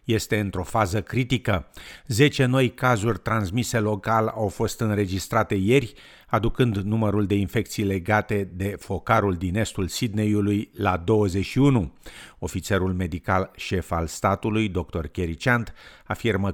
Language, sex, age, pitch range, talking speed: Romanian, male, 50-69, 90-110 Hz, 125 wpm